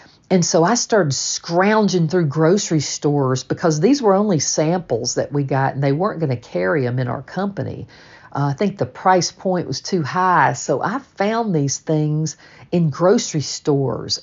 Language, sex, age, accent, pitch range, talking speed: English, female, 50-69, American, 140-185 Hz, 180 wpm